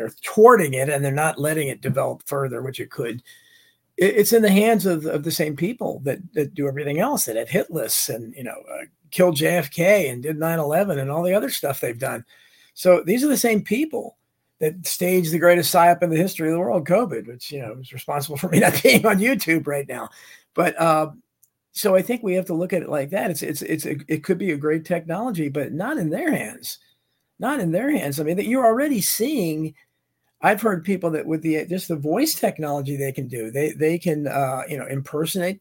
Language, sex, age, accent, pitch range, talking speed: English, male, 50-69, American, 155-200 Hz, 230 wpm